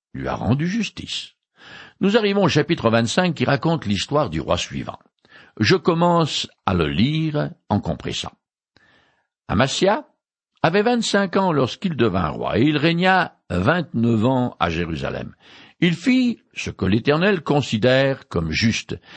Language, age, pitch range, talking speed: French, 60-79, 110-175 Hz, 140 wpm